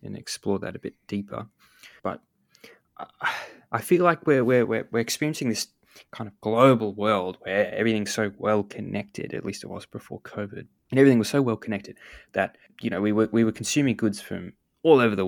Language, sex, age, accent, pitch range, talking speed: English, male, 20-39, Australian, 95-115 Hz, 195 wpm